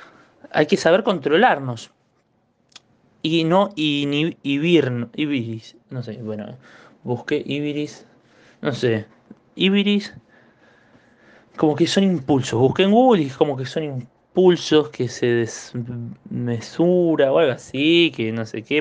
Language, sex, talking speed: Spanish, male, 120 wpm